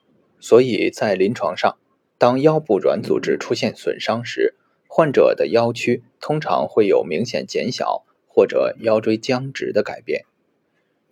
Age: 20-39